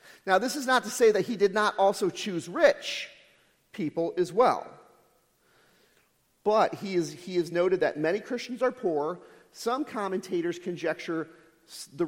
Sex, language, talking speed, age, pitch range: male, English, 160 wpm, 40-59, 150-210 Hz